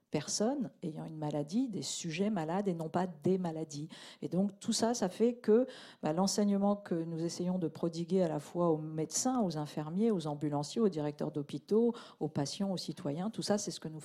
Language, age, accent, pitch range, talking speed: French, 50-69, French, 155-195 Hz, 205 wpm